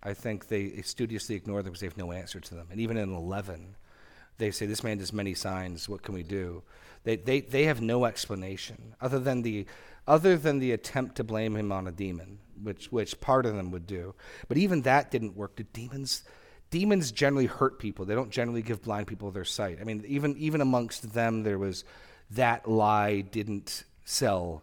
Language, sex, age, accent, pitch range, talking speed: English, male, 40-59, American, 95-120 Hz, 205 wpm